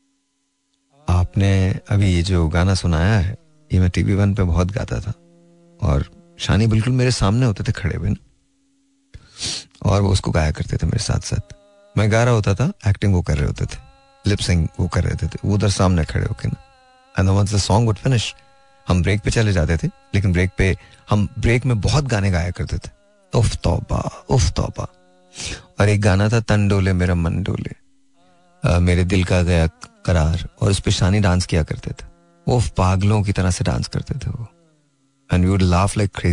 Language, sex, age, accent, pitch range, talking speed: Hindi, male, 30-49, native, 90-135 Hz, 180 wpm